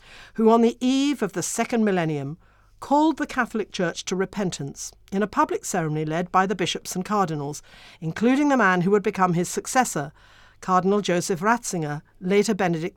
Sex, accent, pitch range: female, British, 155-230 Hz